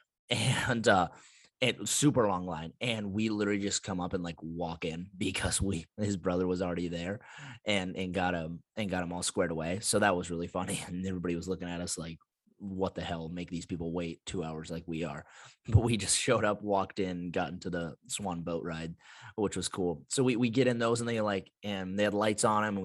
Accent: American